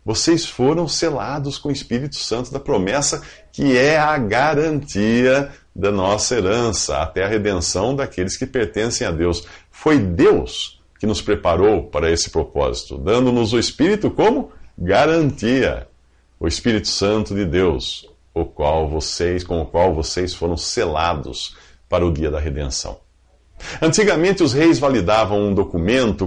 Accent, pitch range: Brazilian, 85-140 Hz